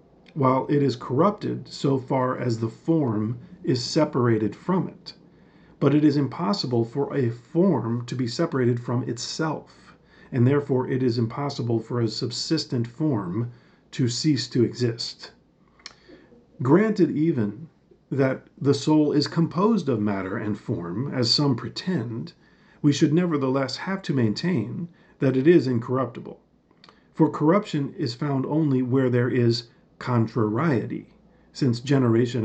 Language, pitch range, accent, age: English, 120-160 Hz, American, 50-69